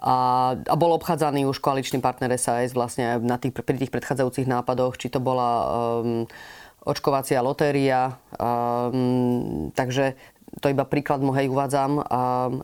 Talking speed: 135 wpm